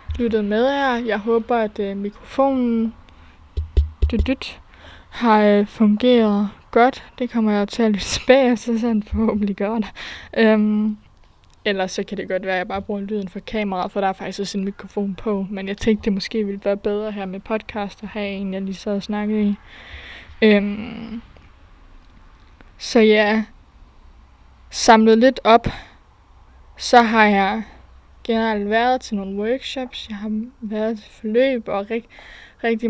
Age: 20-39